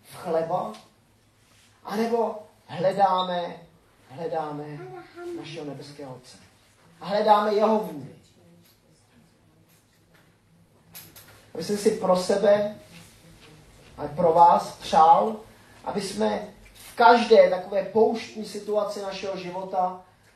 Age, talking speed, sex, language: 30-49, 85 wpm, male, Czech